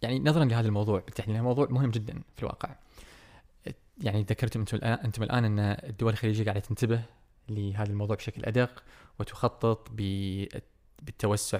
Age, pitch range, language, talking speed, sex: 20-39, 105-125 Hz, Arabic, 130 wpm, male